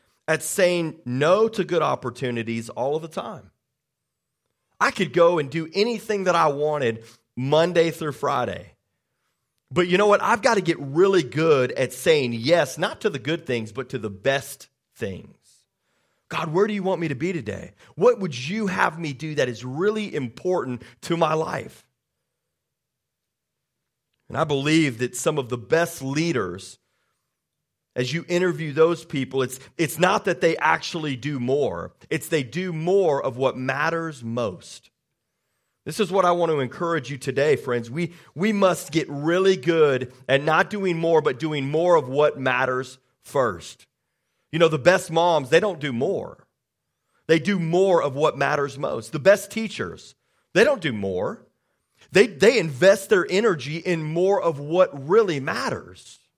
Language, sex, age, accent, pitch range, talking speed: English, male, 40-59, American, 135-180 Hz, 170 wpm